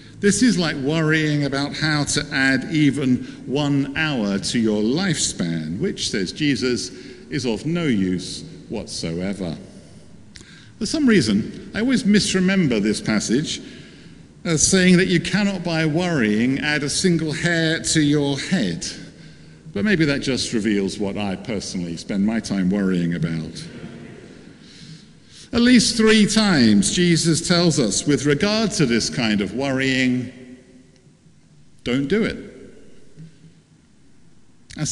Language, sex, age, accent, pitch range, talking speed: English, male, 50-69, British, 135-195 Hz, 130 wpm